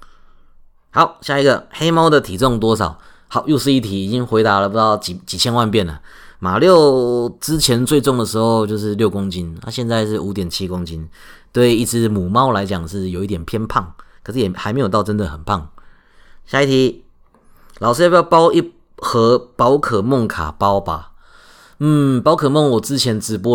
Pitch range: 90-120 Hz